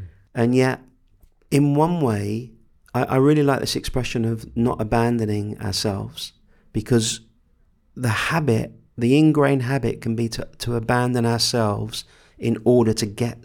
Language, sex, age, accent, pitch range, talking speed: Swedish, male, 40-59, British, 110-140 Hz, 140 wpm